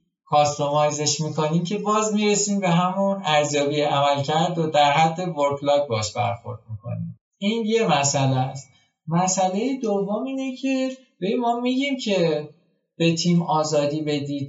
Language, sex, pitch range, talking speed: Persian, male, 135-195 Hz, 130 wpm